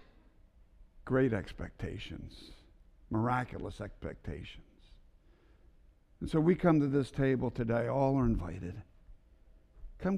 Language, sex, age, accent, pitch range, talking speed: English, male, 60-79, American, 95-130 Hz, 95 wpm